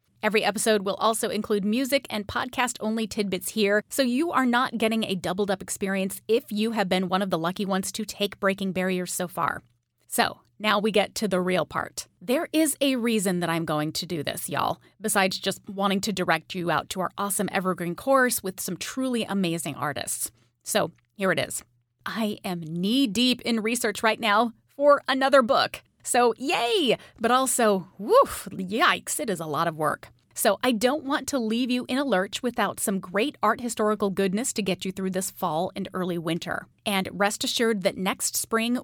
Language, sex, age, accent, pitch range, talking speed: English, female, 30-49, American, 185-235 Hz, 195 wpm